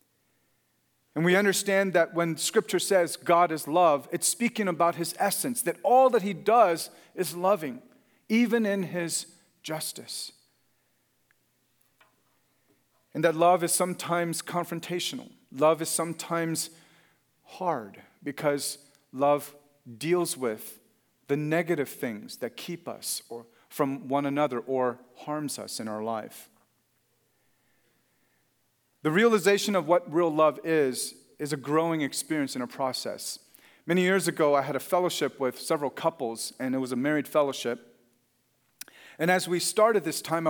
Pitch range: 140-180 Hz